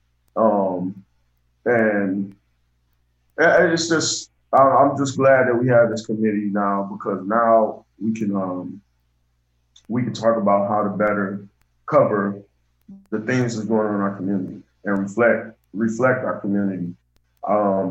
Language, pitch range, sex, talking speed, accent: English, 95-110 Hz, male, 135 wpm, American